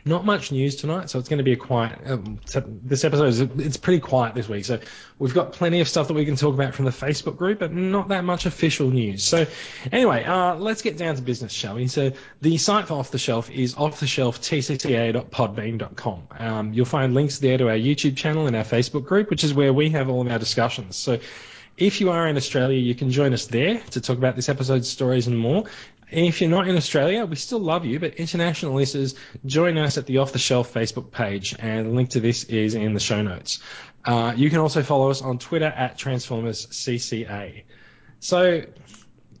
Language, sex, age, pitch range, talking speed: English, male, 20-39, 120-160 Hz, 220 wpm